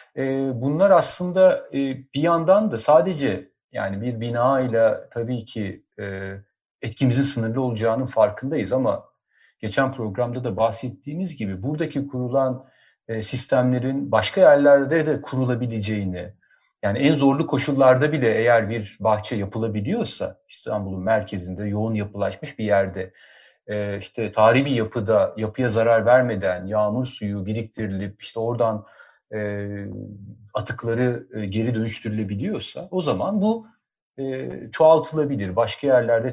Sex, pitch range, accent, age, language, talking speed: male, 110-135 Hz, native, 40-59, Turkish, 105 wpm